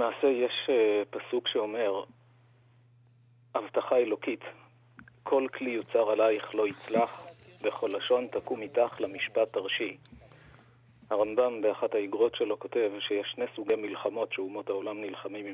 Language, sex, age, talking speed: Hebrew, male, 40-59, 115 wpm